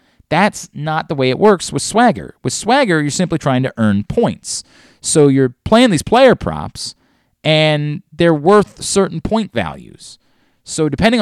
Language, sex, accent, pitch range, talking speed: English, male, American, 120-180 Hz, 160 wpm